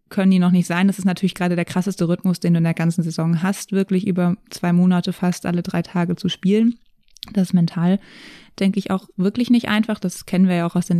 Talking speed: 240 wpm